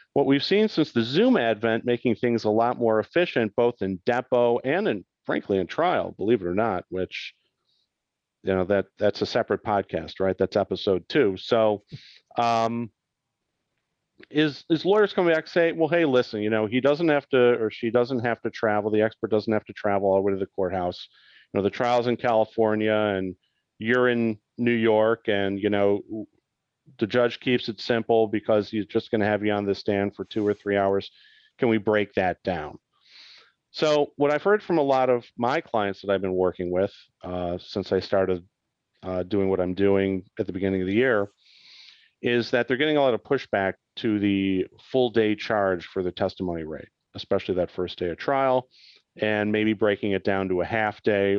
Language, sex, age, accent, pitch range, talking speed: English, male, 40-59, American, 100-125 Hz, 205 wpm